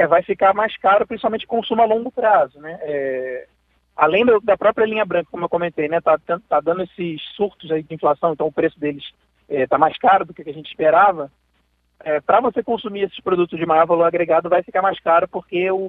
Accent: Brazilian